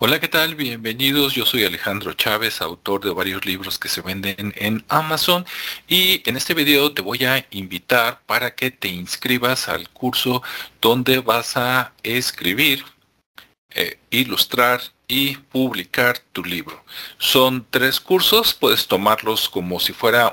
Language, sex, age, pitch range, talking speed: Spanish, male, 40-59, 105-140 Hz, 145 wpm